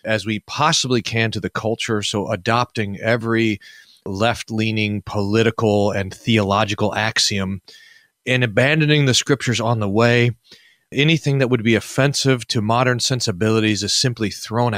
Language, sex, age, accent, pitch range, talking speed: English, male, 40-59, American, 105-135 Hz, 135 wpm